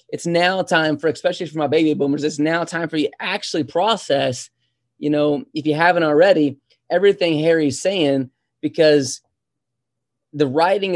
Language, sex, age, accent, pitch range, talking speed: English, male, 20-39, American, 140-165 Hz, 155 wpm